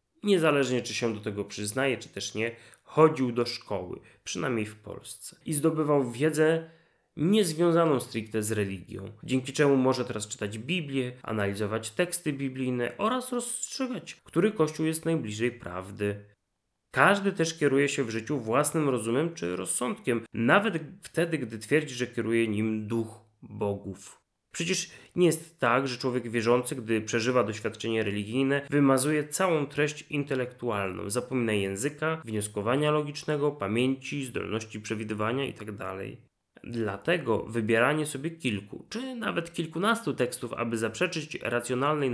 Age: 30-49